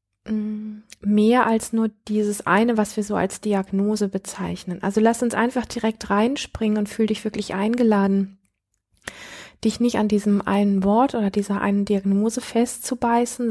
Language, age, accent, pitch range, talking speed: German, 20-39, German, 190-220 Hz, 145 wpm